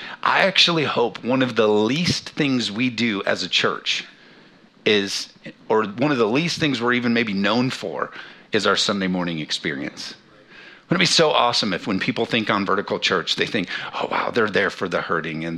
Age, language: 50-69, English